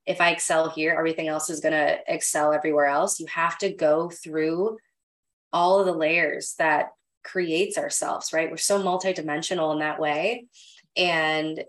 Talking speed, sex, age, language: 165 wpm, female, 20-39, English